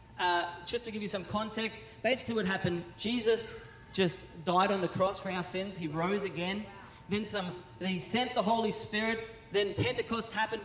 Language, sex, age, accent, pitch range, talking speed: English, male, 30-49, Australian, 175-230 Hz, 185 wpm